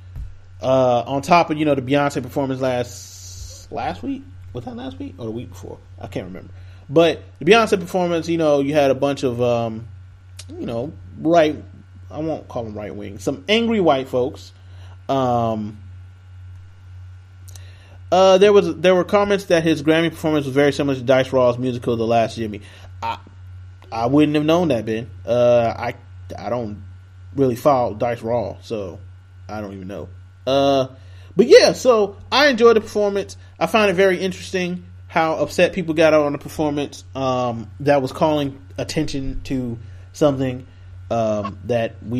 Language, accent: English, American